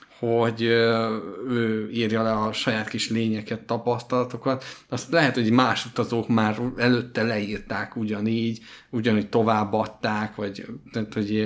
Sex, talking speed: male, 115 wpm